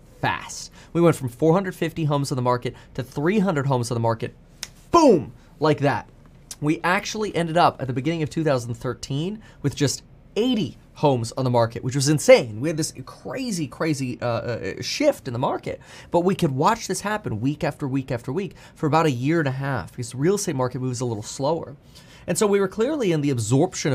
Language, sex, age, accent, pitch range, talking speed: English, male, 20-39, American, 120-165 Hz, 210 wpm